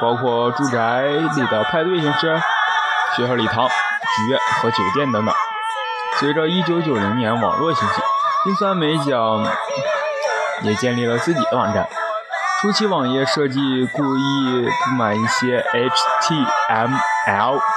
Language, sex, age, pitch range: Chinese, male, 20-39, 120-200 Hz